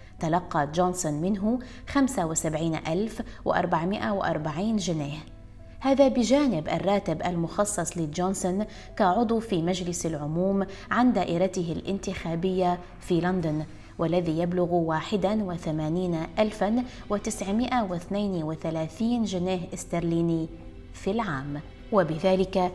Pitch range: 165-205 Hz